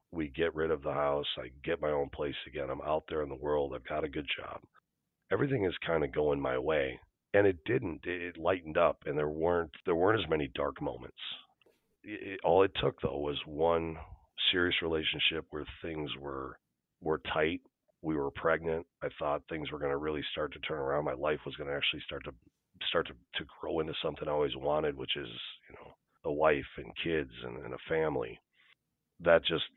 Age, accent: 40-59, American